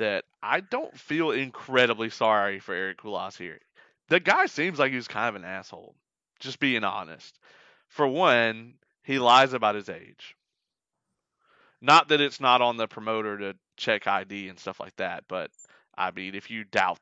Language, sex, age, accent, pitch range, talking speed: English, male, 30-49, American, 100-125 Hz, 175 wpm